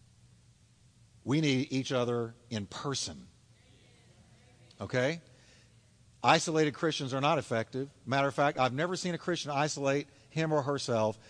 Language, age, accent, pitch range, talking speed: English, 50-69, American, 115-160 Hz, 125 wpm